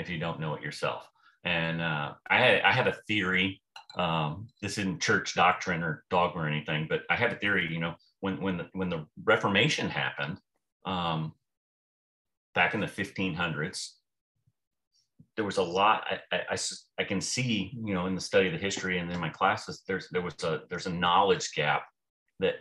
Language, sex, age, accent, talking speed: English, male, 30-49, American, 190 wpm